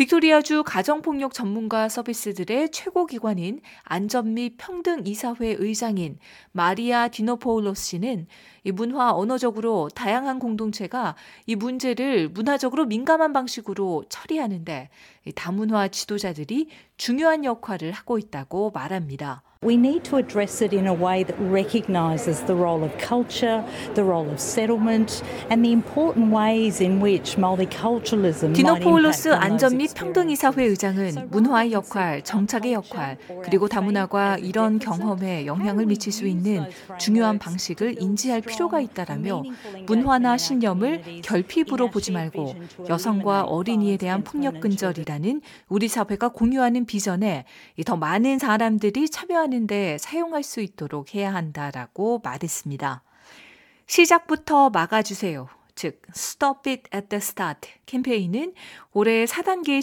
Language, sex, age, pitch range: Korean, female, 40-59, 185-245 Hz